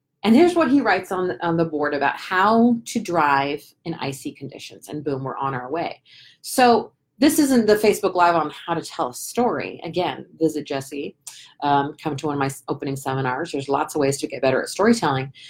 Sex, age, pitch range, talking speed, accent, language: female, 30-49, 150-245 Hz, 205 wpm, American, English